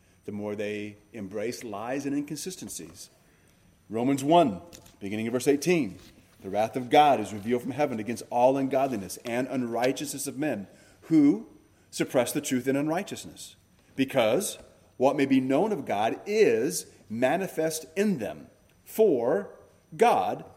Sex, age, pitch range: male, 30-49, 115-170 Hz